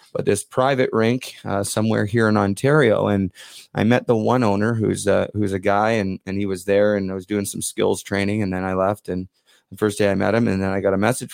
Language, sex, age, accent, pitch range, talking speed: English, male, 30-49, American, 100-130 Hz, 260 wpm